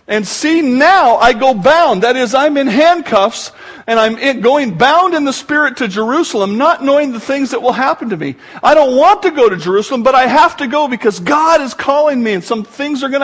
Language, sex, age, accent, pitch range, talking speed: English, male, 50-69, American, 235-325 Hz, 230 wpm